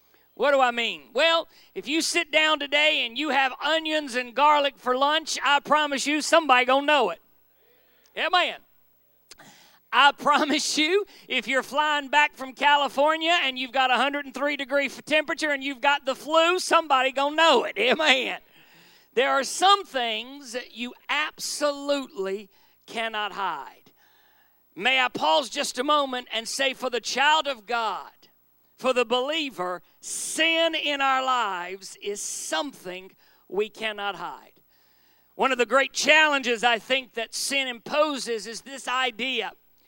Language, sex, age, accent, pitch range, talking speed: English, male, 40-59, American, 250-300 Hz, 150 wpm